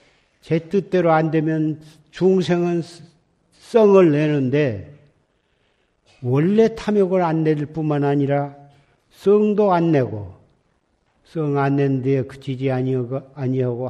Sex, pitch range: male, 130-165 Hz